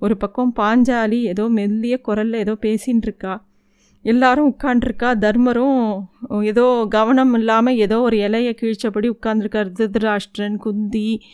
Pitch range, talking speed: 215-260 Hz, 115 wpm